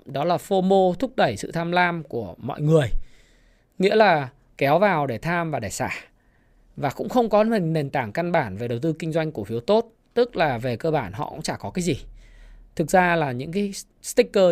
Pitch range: 150-195 Hz